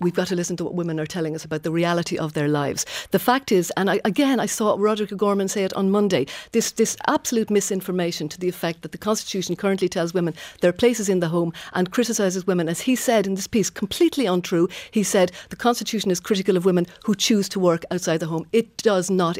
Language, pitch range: English, 175-225 Hz